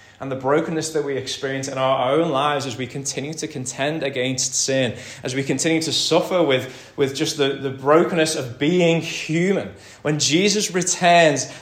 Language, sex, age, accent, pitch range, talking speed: English, male, 20-39, British, 135-170 Hz, 175 wpm